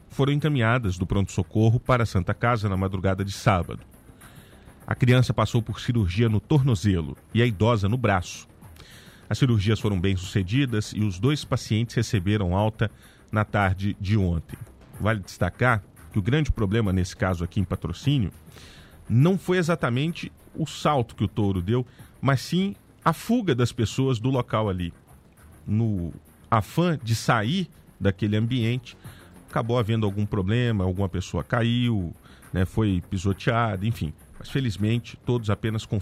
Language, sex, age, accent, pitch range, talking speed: Portuguese, male, 40-59, Brazilian, 95-125 Hz, 150 wpm